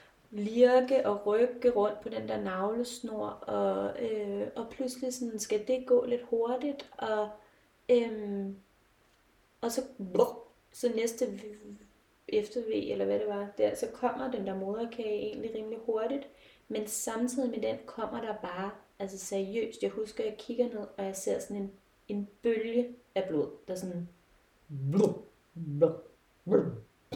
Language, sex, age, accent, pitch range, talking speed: Danish, female, 20-39, native, 195-235 Hz, 140 wpm